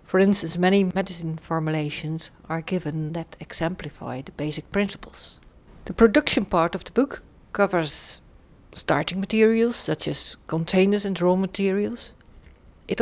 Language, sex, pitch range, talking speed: English, female, 155-195 Hz, 130 wpm